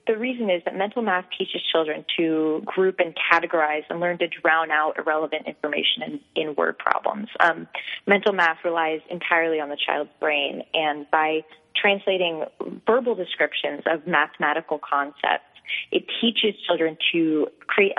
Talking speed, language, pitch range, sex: 150 wpm, English, 155-190 Hz, female